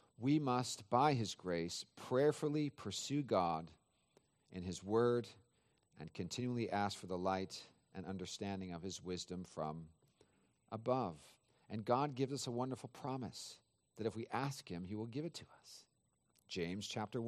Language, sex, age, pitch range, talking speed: English, male, 40-59, 95-125 Hz, 155 wpm